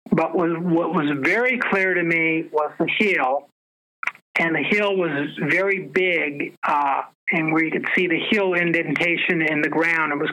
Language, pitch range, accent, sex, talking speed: English, 165-195 Hz, American, male, 175 wpm